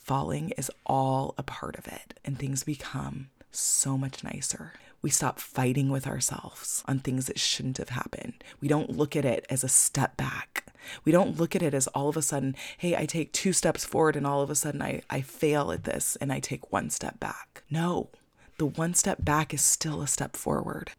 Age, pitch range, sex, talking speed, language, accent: 20-39, 135-160 Hz, female, 215 wpm, English, American